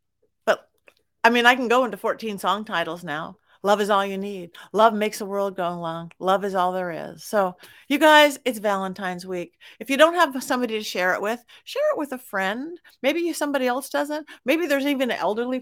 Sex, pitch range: female, 190-280 Hz